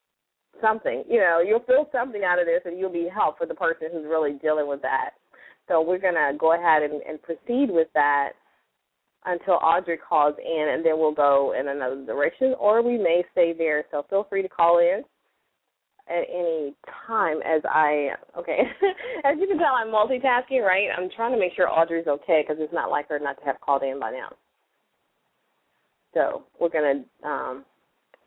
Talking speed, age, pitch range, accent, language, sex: 190 wpm, 20-39, 155-210 Hz, American, English, female